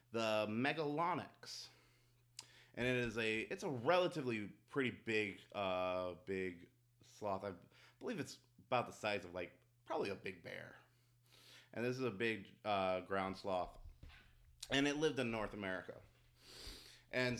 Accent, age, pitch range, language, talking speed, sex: American, 30-49, 105-140 Hz, English, 140 wpm, male